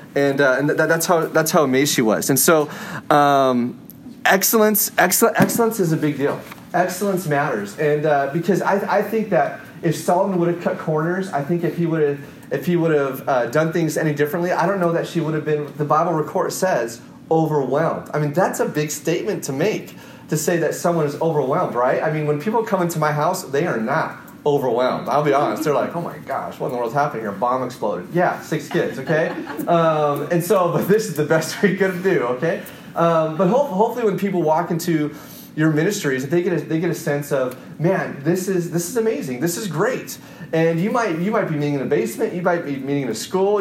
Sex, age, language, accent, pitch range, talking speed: male, 30-49, English, American, 145-180 Hz, 230 wpm